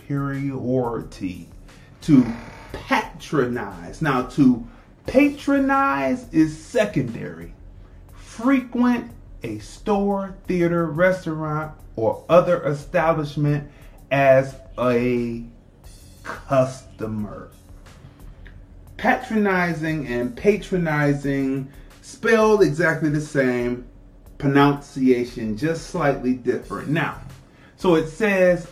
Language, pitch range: English, 125-190 Hz